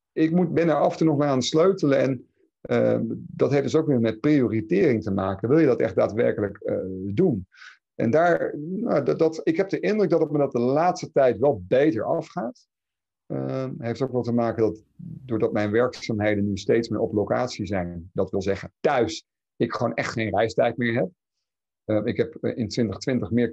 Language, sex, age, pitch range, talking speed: Dutch, male, 50-69, 110-150 Hz, 205 wpm